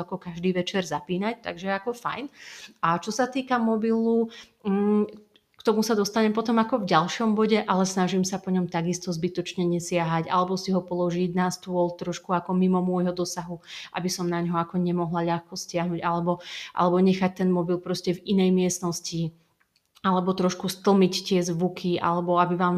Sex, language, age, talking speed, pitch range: female, Slovak, 30-49, 170 wpm, 170-195 Hz